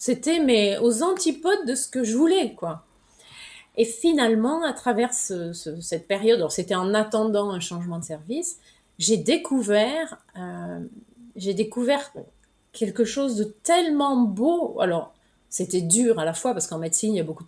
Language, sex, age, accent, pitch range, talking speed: French, female, 30-49, French, 180-240 Hz, 170 wpm